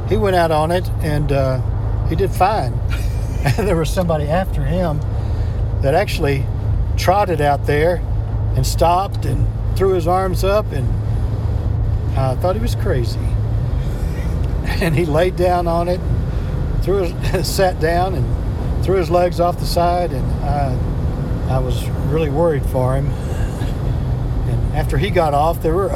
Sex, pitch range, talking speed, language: male, 105-130 Hz, 155 wpm, English